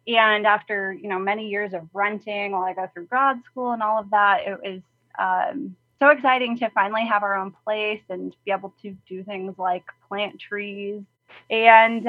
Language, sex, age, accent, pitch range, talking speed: English, female, 20-39, American, 200-230 Hz, 195 wpm